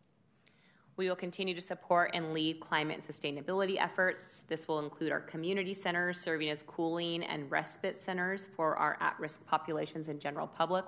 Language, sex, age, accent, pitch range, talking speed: English, female, 30-49, American, 155-190 Hz, 160 wpm